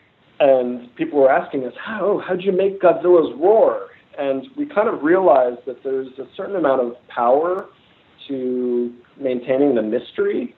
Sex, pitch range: male, 120-150 Hz